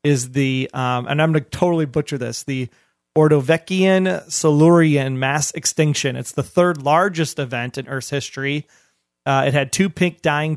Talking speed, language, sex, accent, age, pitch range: 165 wpm, English, male, American, 30-49, 135-160 Hz